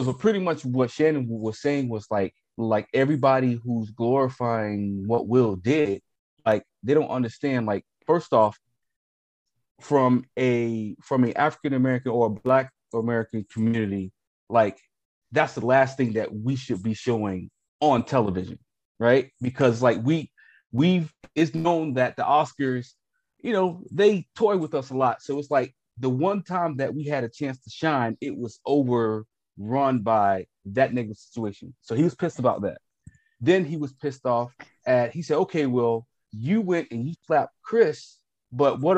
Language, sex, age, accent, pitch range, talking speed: English, male, 30-49, American, 120-155 Hz, 170 wpm